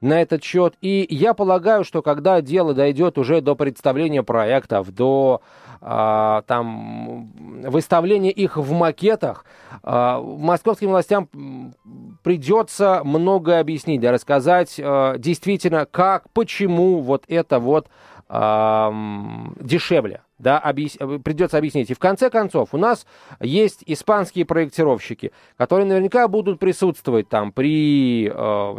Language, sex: Russian, male